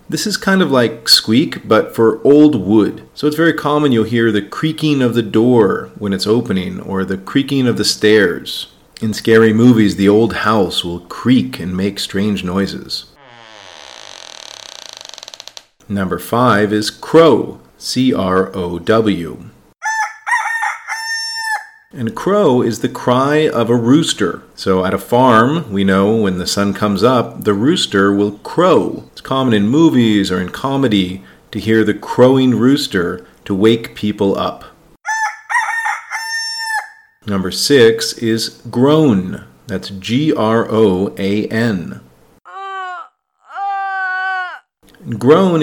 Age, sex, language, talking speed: 40-59, male, English, 125 wpm